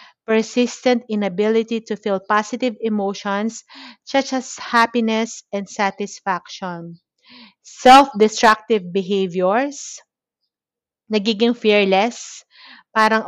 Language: Filipino